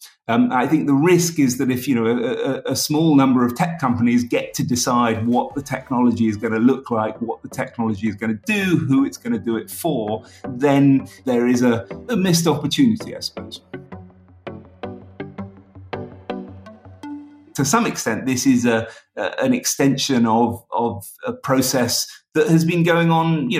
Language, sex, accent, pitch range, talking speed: English, male, British, 125-155 Hz, 180 wpm